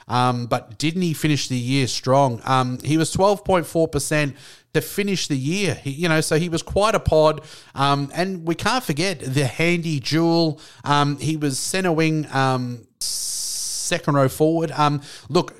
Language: English